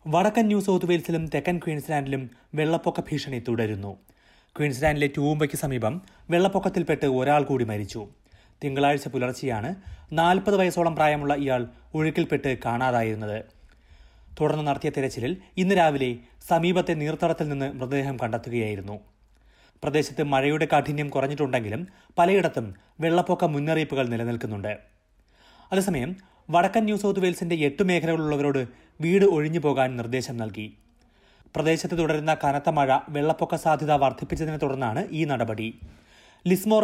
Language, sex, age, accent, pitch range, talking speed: Malayalam, male, 30-49, native, 120-165 Hz, 105 wpm